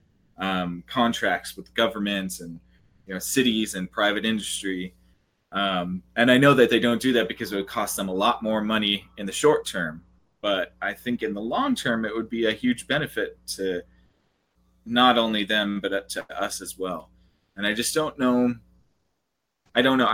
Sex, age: male, 20-39